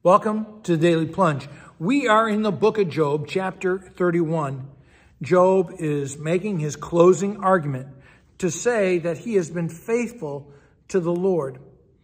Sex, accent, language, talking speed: male, American, English, 150 wpm